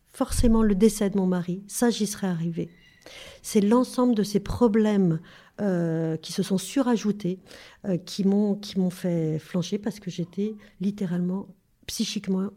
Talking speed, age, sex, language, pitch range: 155 wpm, 50-69, female, French, 175-220 Hz